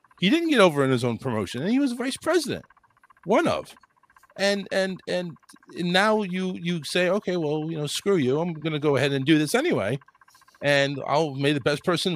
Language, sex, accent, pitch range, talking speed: English, male, American, 120-170 Hz, 210 wpm